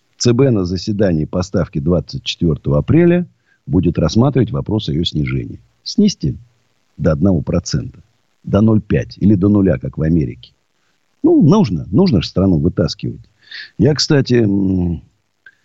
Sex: male